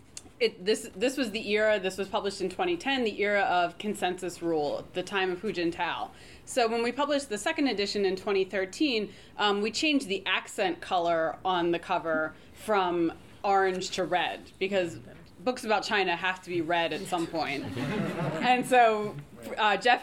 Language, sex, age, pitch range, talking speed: English, female, 20-39, 175-215 Hz, 175 wpm